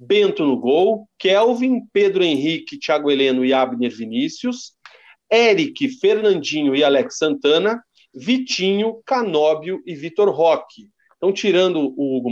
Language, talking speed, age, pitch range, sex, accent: Portuguese, 120 wpm, 40-59, 140-225 Hz, male, Brazilian